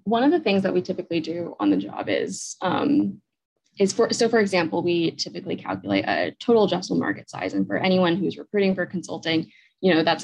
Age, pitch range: 20-39, 160-205 Hz